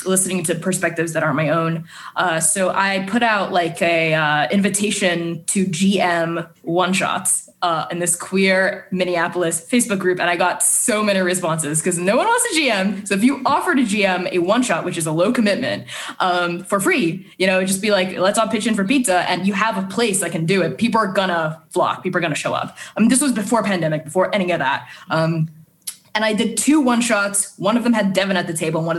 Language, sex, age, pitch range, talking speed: English, female, 20-39, 165-210 Hz, 225 wpm